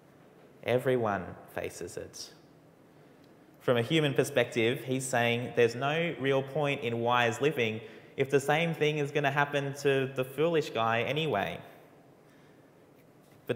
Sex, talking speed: male, 135 wpm